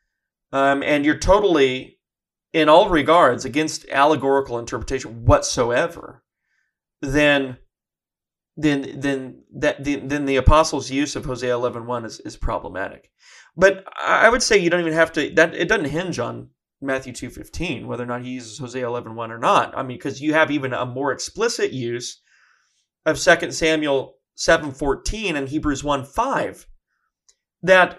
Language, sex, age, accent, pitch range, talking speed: English, male, 30-49, American, 135-180 Hz, 150 wpm